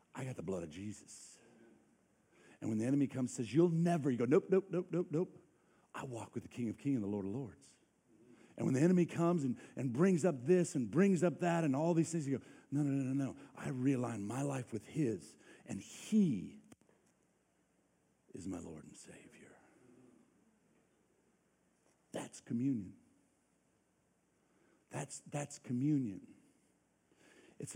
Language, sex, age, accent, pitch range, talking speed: English, male, 50-69, American, 120-160 Hz, 170 wpm